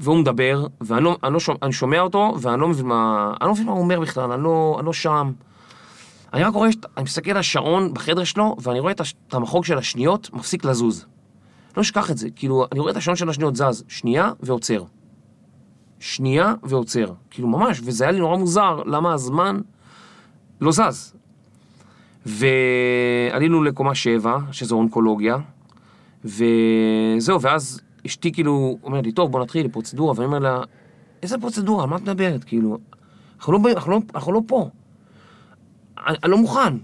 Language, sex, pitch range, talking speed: Hebrew, male, 125-175 Hz, 165 wpm